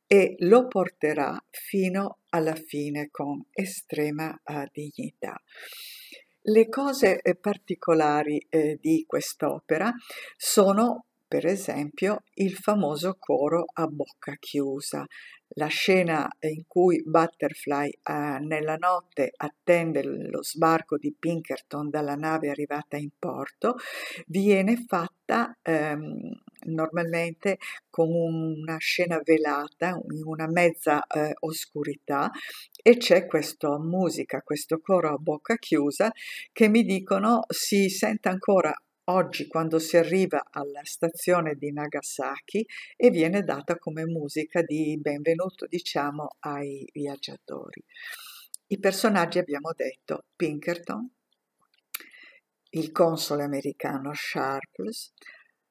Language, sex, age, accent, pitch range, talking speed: Italian, female, 50-69, native, 150-190 Hz, 105 wpm